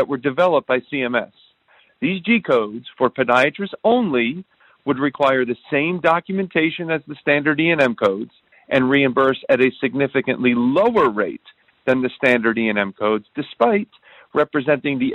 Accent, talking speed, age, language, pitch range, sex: American, 145 wpm, 40-59, English, 130-175 Hz, male